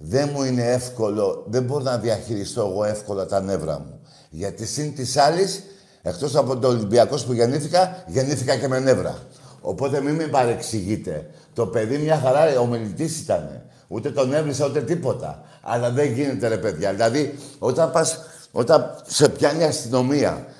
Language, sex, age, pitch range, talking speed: Greek, male, 60-79, 125-160 Hz, 165 wpm